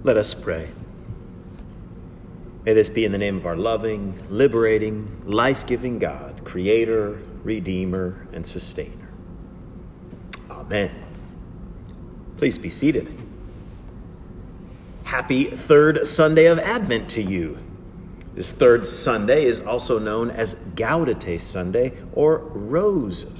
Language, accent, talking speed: English, American, 105 wpm